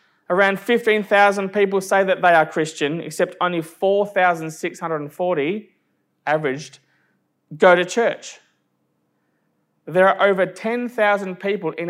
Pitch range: 170-210 Hz